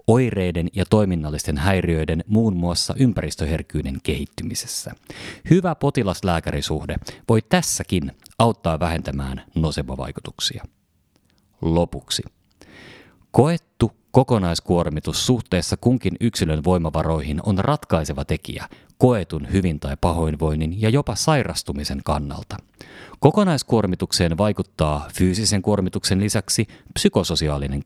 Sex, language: male, Finnish